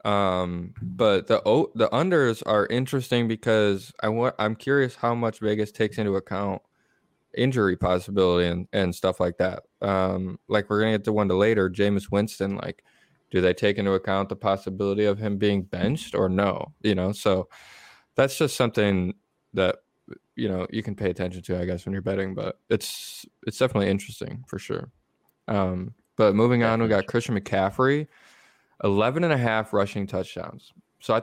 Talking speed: 180 wpm